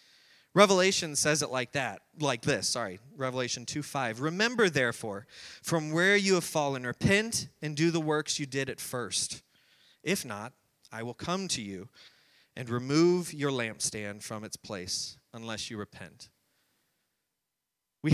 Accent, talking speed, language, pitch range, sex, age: American, 150 wpm, English, 125-155 Hz, male, 30-49